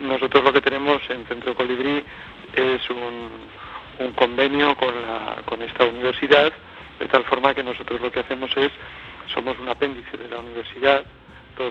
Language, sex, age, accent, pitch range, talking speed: Spanish, male, 60-79, Spanish, 120-130 Hz, 160 wpm